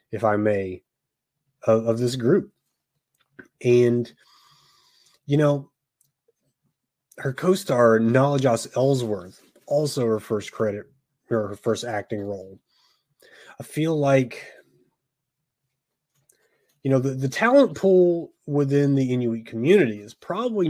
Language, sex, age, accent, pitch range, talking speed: English, male, 30-49, American, 115-145 Hz, 115 wpm